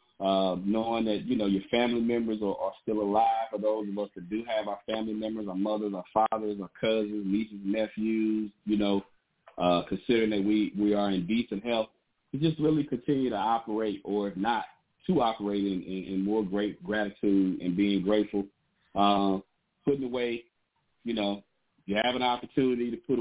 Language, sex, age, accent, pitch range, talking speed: English, male, 40-59, American, 100-120 Hz, 185 wpm